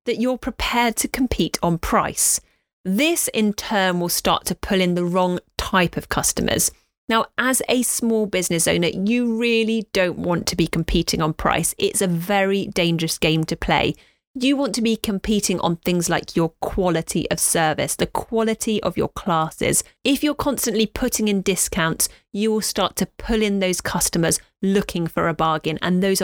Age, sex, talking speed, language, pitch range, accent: 30-49, female, 180 wpm, English, 170-235 Hz, British